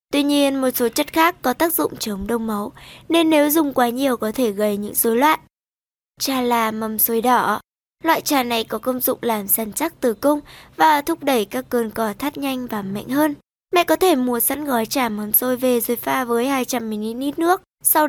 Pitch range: 235-305 Hz